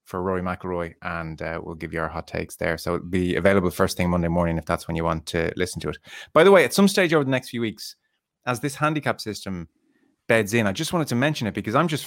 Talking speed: 275 wpm